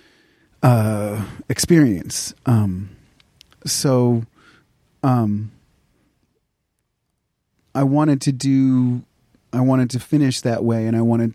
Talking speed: 95 wpm